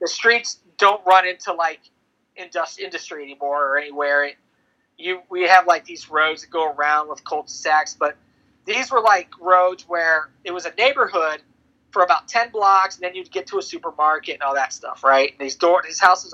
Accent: American